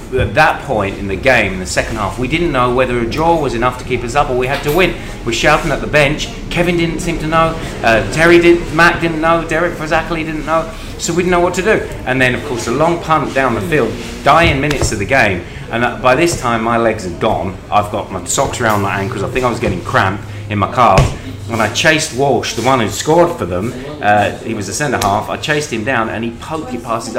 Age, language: 30-49, English